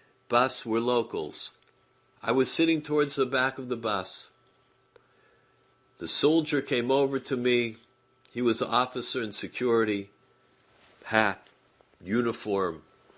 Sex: male